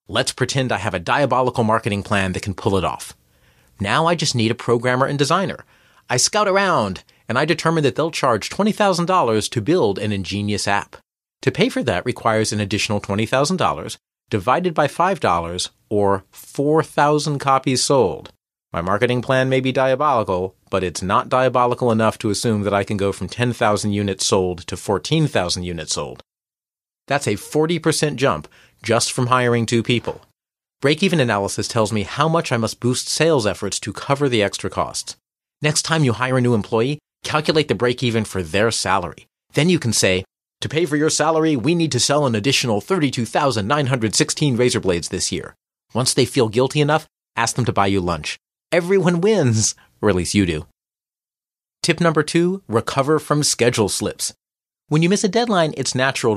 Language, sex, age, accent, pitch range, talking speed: English, male, 40-59, American, 105-150 Hz, 175 wpm